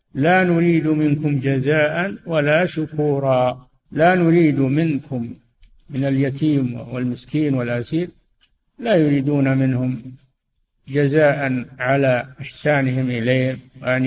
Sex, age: male, 60-79